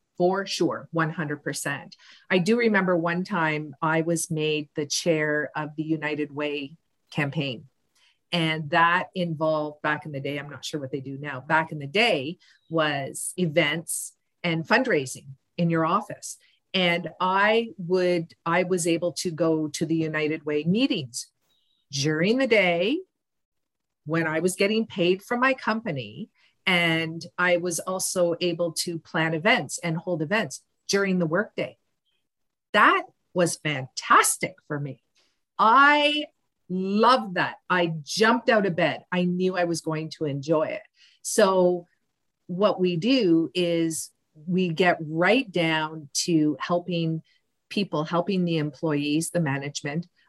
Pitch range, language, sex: 155-185 Hz, English, female